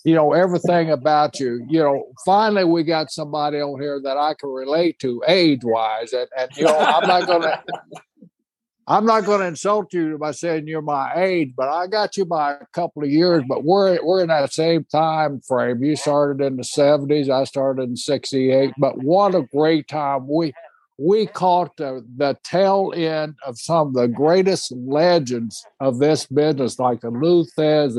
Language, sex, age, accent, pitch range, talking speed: English, male, 60-79, American, 135-170 Hz, 185 wpm